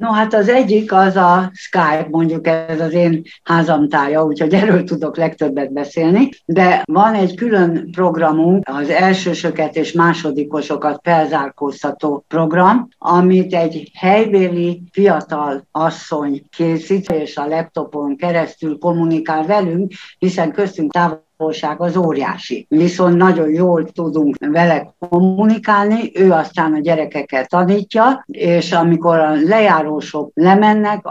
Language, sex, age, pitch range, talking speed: Hungarian, female, 60-79, 150-185 Hz, 120 wpm